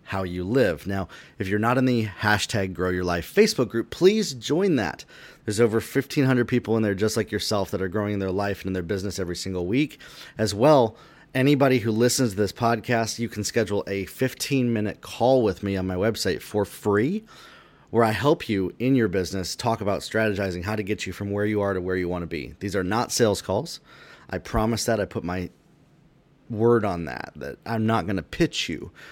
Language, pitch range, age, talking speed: English, 100-130 Hz, 30-49, 220 wpm